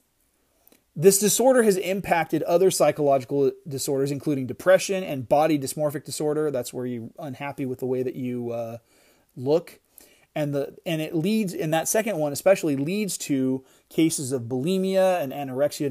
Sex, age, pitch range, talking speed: male, 30-49, 135-170 Hz, 155 wpm